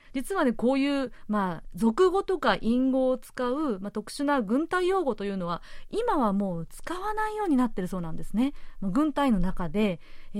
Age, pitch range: 30-49, 195-275 Hz